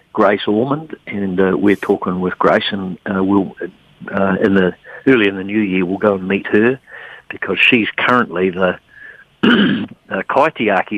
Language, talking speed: English, 165 wpm